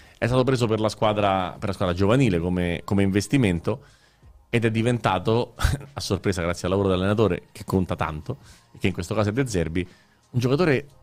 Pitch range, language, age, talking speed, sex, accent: 90-115 Hz, Italian, 30-49, 185 wpm, male, native